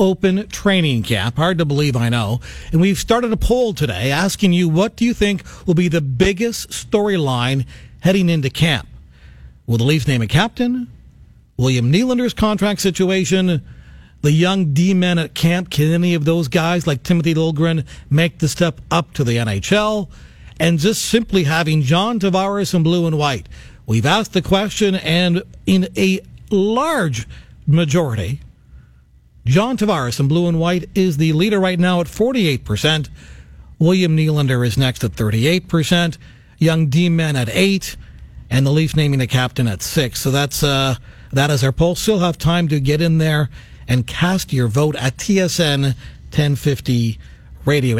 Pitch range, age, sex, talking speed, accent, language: 130-185 Hz, 40-59, male, 170 wpm, American, English